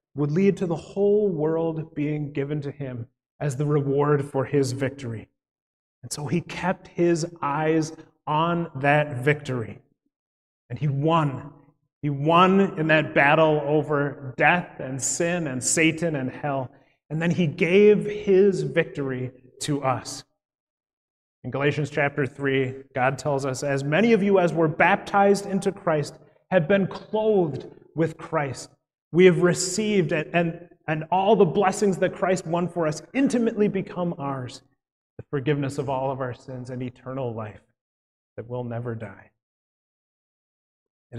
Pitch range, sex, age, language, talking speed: 135-175 Hz, male, 30-49, English, 145 wpm